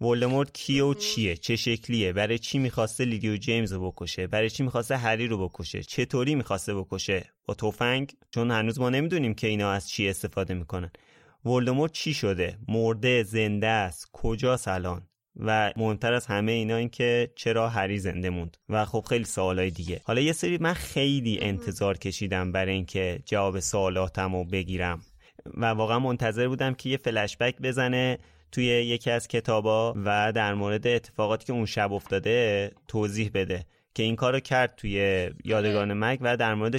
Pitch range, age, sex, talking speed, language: 100-125 Hz, 30-49, male, 170 wpm, Persian